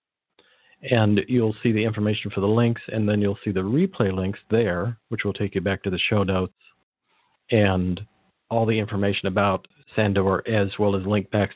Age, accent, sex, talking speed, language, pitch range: 50-69, American, male, 185 wpm, English, 95-115 Hz